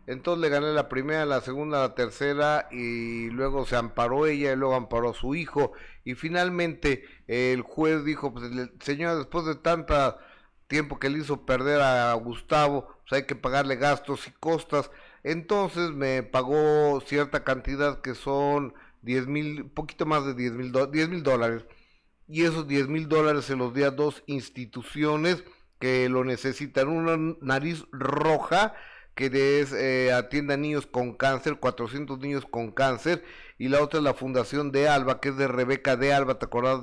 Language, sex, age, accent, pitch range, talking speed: Spanish, male, 40-59, Mexican, 130-150 Hz, 180 wpm